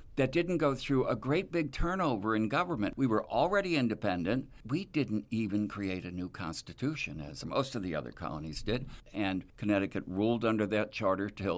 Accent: American